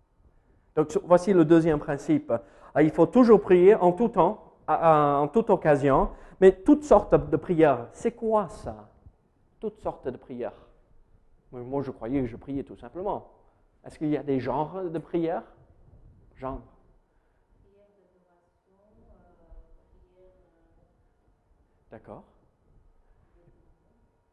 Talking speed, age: 110 wpm, 40-59